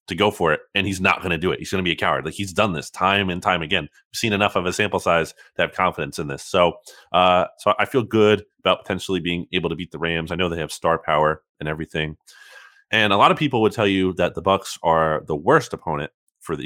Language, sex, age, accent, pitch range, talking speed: English, male, 30-49, American, 80-105 Hz, 275 wpm